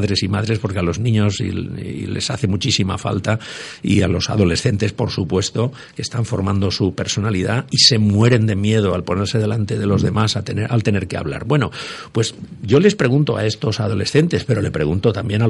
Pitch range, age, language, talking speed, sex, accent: 105-130 Hz, 50-69, Spanish, 200 wpm, male, Spanish